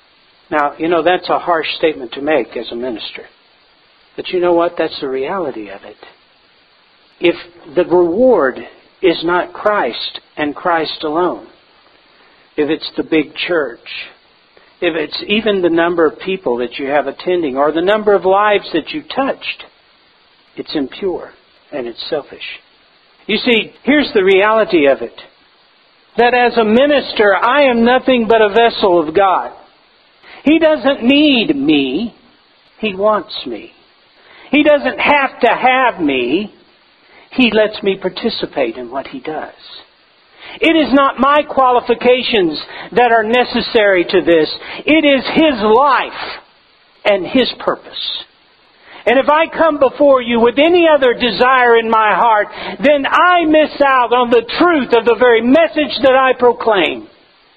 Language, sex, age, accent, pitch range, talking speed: English, male, 60-79, American, 185-280 Hz, 150 wpm